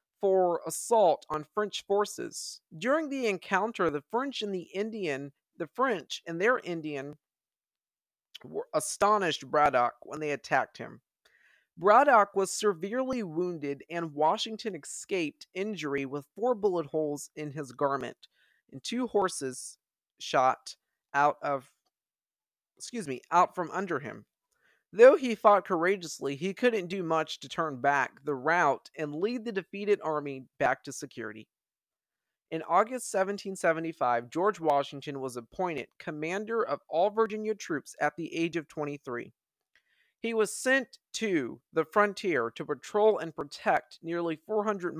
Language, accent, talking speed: English, American, 135 wpm